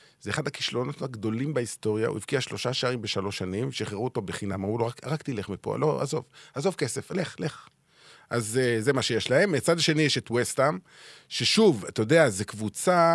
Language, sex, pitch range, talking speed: Hebrew, male, 110-160 Hz, 190 wpm